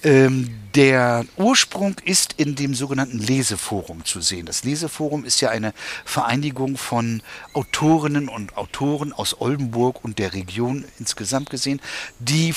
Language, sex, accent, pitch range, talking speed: German, male, German, 125-155 Hz, 130 wpm